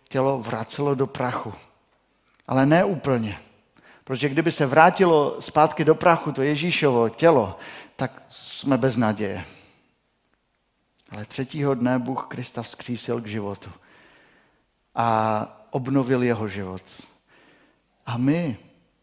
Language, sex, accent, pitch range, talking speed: Czech, male, native, 110-140 Hz, 110 wpm